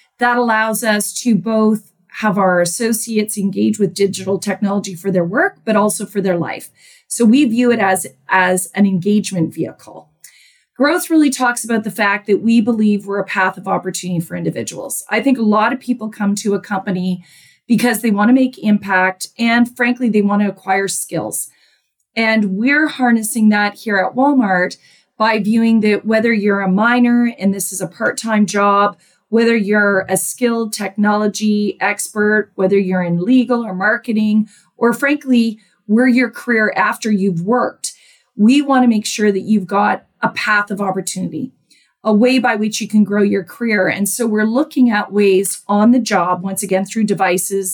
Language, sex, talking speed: English, female, 175 wpm